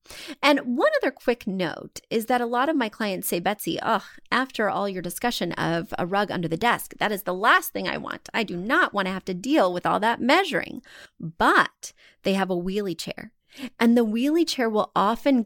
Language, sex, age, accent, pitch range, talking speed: English, female, 30-49, American, 180-260 Hz, 215 wpm